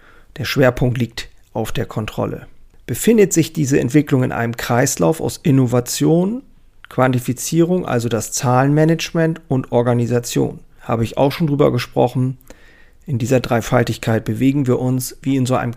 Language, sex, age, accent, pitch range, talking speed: German, male, 40-59, German, 120-140 Hz, 140 wpm